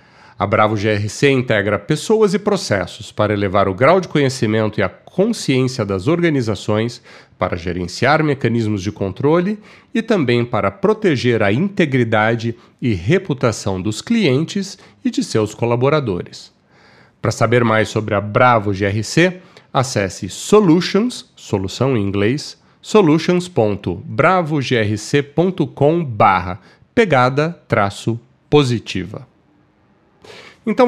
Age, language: 40-59, Portuguese